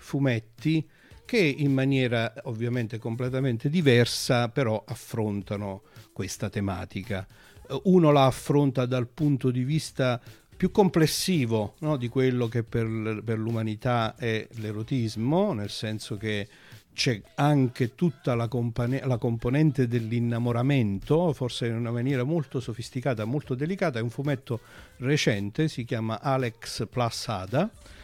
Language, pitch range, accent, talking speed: Italian, 115-140 Hz, native, 120 wpm